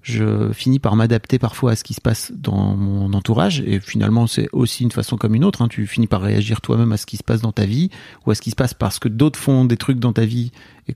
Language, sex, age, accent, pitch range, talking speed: French, male, 30-49, French, 110-135 Hz, 285 wpm